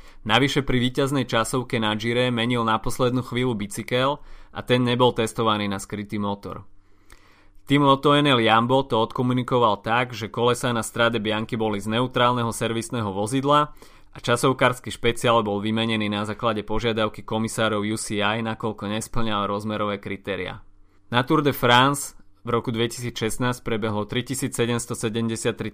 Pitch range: 105-125 Hz